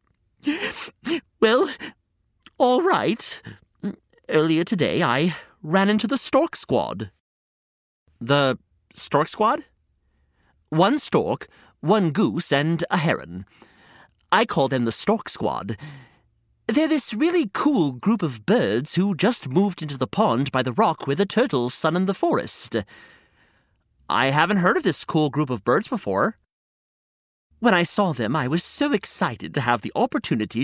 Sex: male